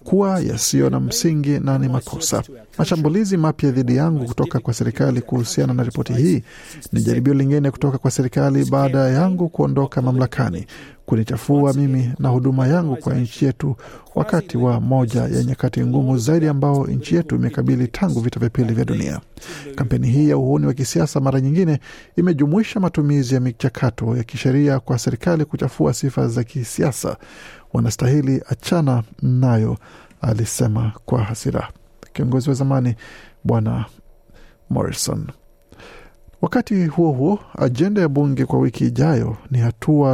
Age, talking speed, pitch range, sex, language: 50-69, 140 wpm, 120-145 Hz, male, Swahili